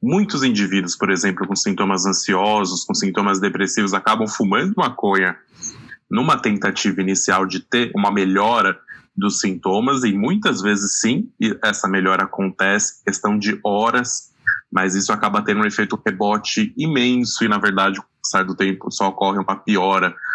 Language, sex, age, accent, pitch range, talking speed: Portuguese, male, 20-39, Brazilian, 95-135 Hz, 155 wpm